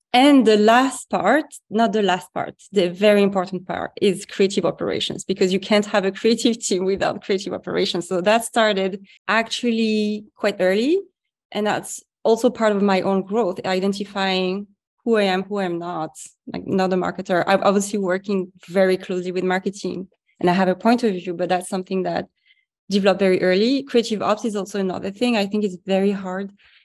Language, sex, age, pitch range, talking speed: English, female, 20-39, 185-225 Hz, 185 wpm